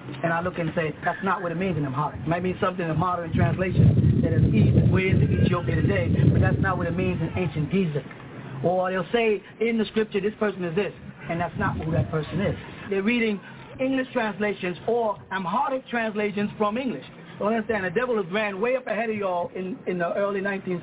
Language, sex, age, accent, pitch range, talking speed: English, male, 30-49, American, 175-215 Hz, 225 wpm